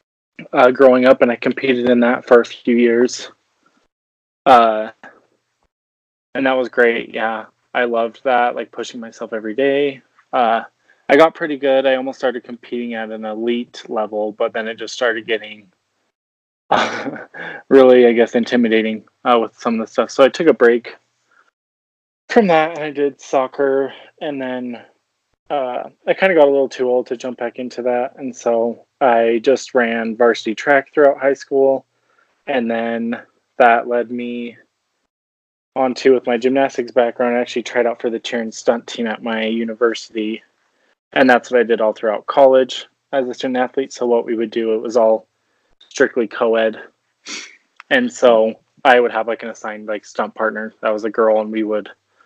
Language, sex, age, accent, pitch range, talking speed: English, male, 20-39, American, 110-130 Hz, 180 wpm